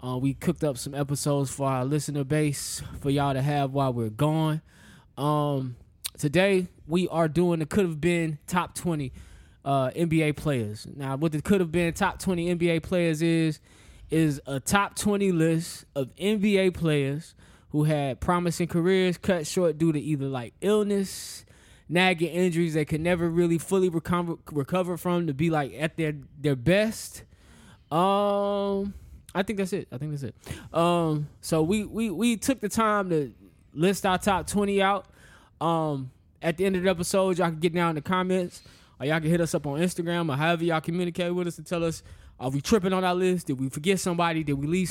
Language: English